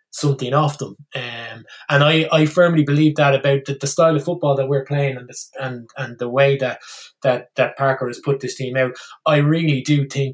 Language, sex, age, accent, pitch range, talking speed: English, male, 20-39, Irish, 125-145 Hz, 220 wpm